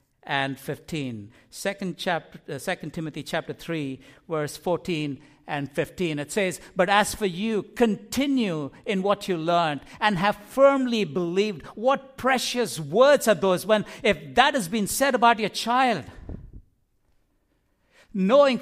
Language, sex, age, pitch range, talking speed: English, male, 60-79, 140-215 Hz, 140 wpm